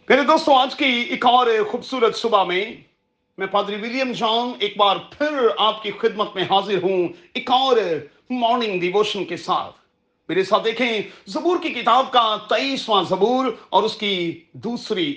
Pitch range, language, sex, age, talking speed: 195-255 Hz, Urdu, male, 40-59, 155 wpm